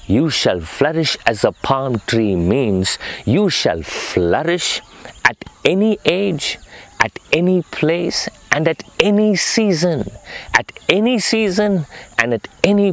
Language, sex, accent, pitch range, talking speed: English, male, Indian, 110-160 Hz, 125 wpm